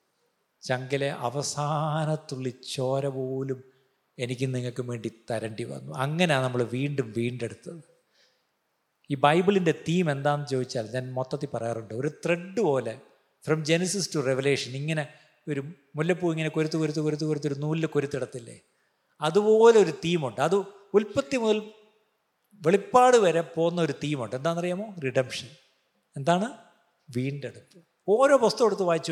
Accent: native